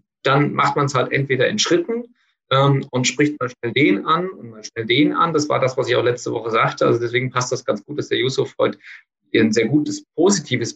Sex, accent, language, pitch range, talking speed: male, German, German, 120-145 Hz, 240 wpm